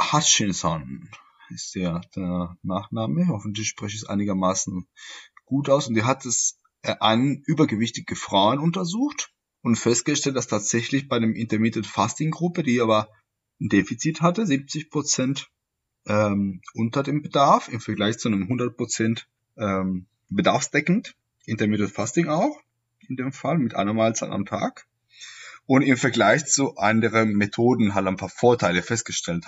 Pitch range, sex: 100-135 Hz, male